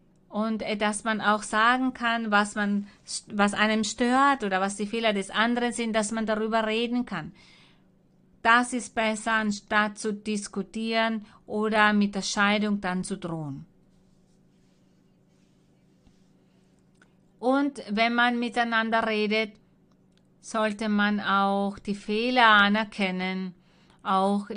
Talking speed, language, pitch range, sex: 115 wpm, German, 195-225 Hz, female